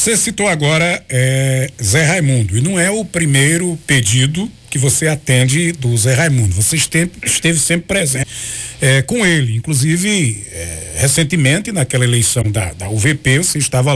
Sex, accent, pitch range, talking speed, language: male, Brazilian, 130-175 Hz, 150 wpm, Portuguese